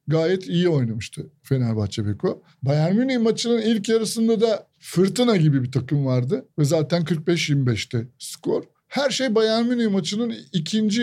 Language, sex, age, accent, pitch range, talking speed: Turkish, male, 50-69, native, 145-205 Hz, 140 wpm